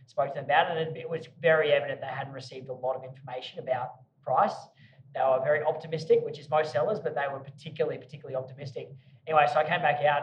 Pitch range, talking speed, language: 135-155 Hz, 235 wpm, English